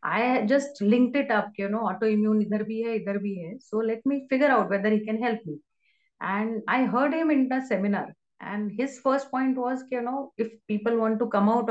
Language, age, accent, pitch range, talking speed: English, 30-49, Indian, 205-255 Hz, 195 wpm